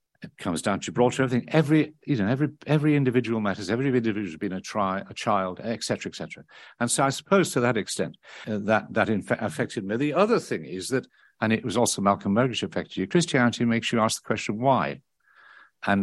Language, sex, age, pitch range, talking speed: English, male, 60-79, 100-135 Hz, 225 wpm